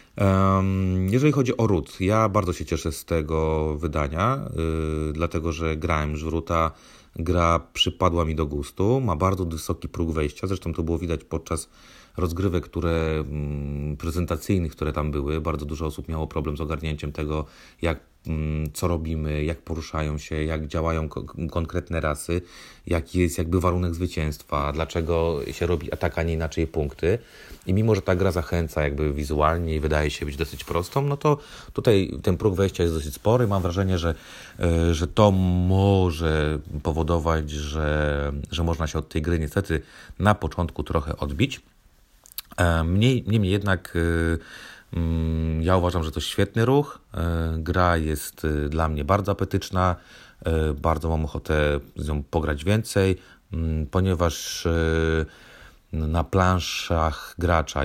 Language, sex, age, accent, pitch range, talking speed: Polish, male, 30-49, native, 75-90 Hz, 145 wpm